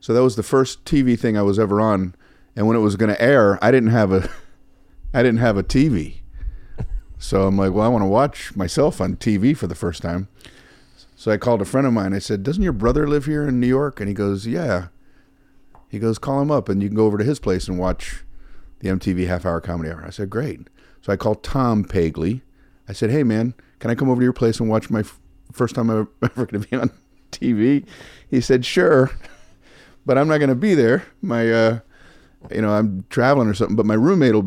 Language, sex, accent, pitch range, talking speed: English, male, American, 105-155 Hz, 230 wpm